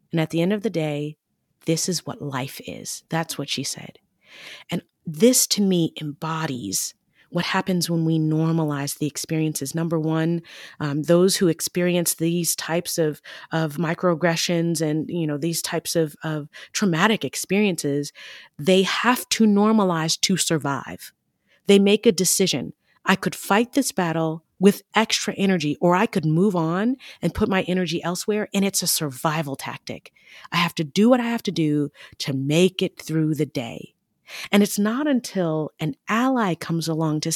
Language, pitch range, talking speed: English, 160-215 Hz, 170 wpm